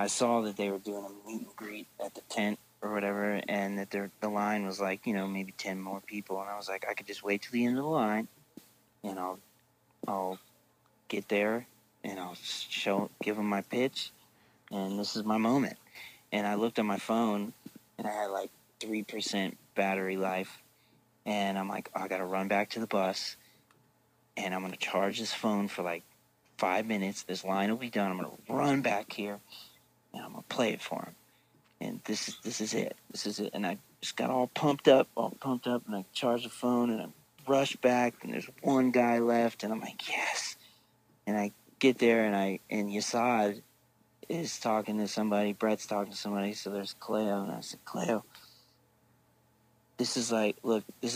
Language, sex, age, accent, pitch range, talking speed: English, male, 30-49, American, 100-115 Hz, 205 wpm